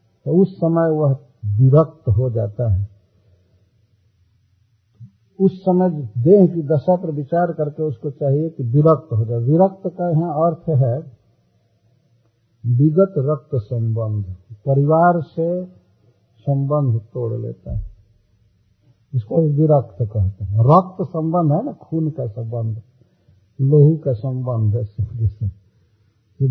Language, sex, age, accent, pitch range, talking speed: Hindi, male, 60-79, native, 110-165 Hz, 120 wpm